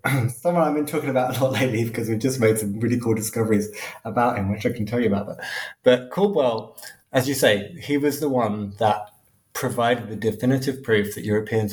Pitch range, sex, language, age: 105-130 Hz, male, English, 20-39